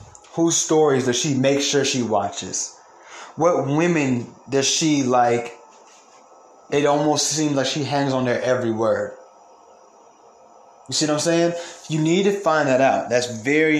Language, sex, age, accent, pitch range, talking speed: English, male, 20-39, American, 135-180 Hz, 155 wpm